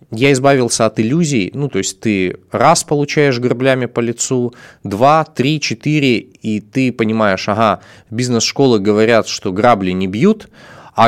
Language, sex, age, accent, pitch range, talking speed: Russian, male, 20-39, native, 105-140 Hz, 145 wpm